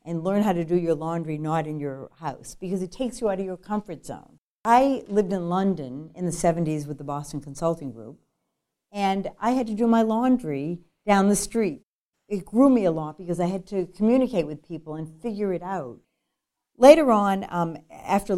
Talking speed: 200 wpm